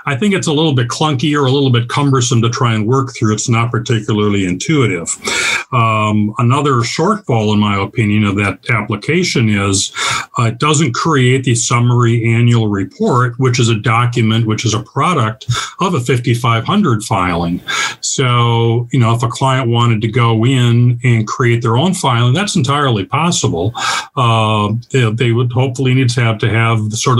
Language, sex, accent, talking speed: English, male, American, 180 wpm